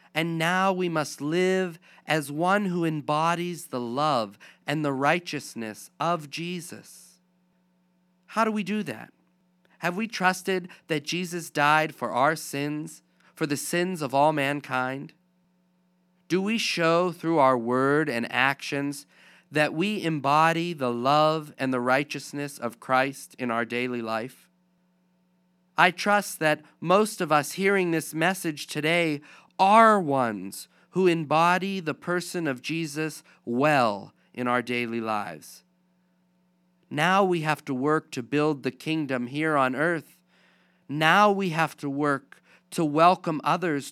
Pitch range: 145-180 Hz